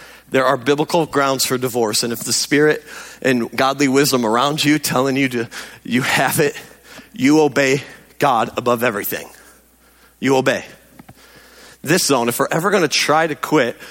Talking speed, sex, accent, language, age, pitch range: 160 wpm, male, American, English, 40-59, 120-160 Hz